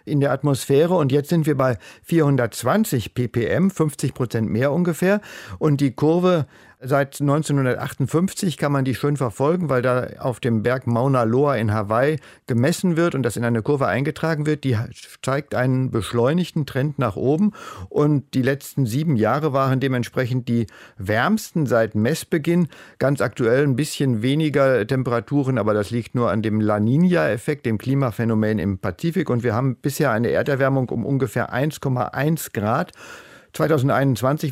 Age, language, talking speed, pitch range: 50-69, German, 160 wpm, 120-150 Hz